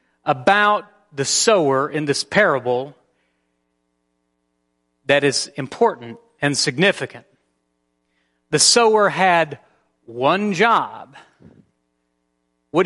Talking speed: 80 wpm